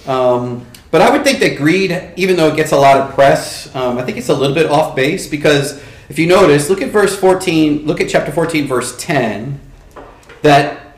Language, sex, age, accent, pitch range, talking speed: English, male, 40-59, American, 135-185 Hz, 215 wpm